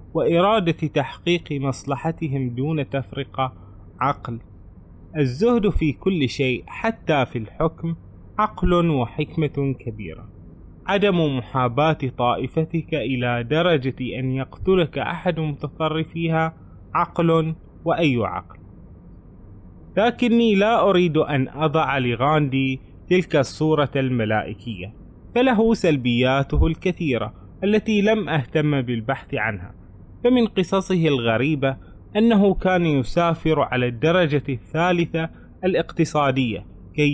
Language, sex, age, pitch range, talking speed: Arabic, male, 20-39, 125-170 Hz, 90 wpm